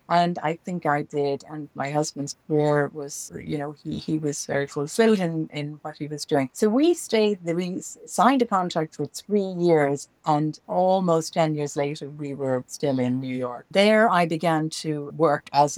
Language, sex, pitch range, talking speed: English, female, 140-170 Hz, 190 wpm